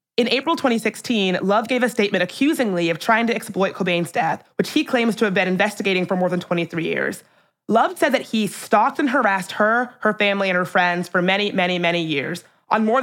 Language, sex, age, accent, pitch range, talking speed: English, female, 20-39, American, 175-235 Hz, 210 wpm